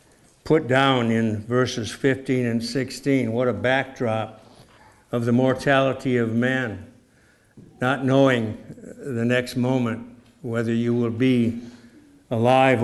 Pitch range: 115-130 Hz